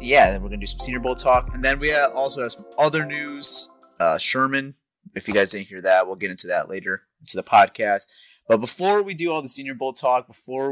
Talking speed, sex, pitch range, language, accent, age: 240 wpm, male, 100-125 Hz, English, American, 20-39